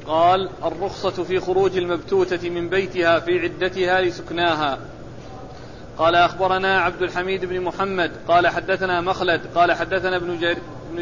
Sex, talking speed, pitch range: male, 120 wpm, 175-195 Hz